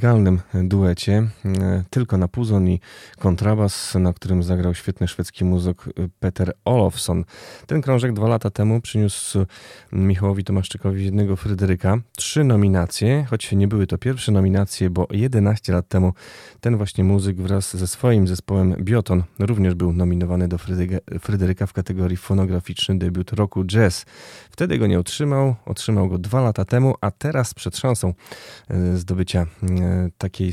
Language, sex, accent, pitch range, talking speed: Polish, male, native, 90-105 Hz, 140 wpm